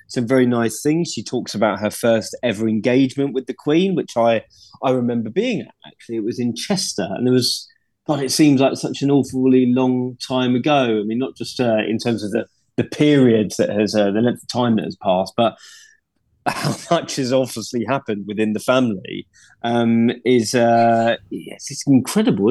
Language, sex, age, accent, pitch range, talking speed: English, male, 20-39, British, 115-140 Hz, 200 wpm